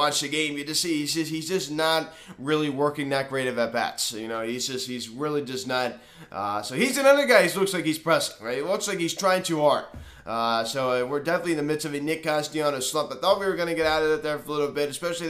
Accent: American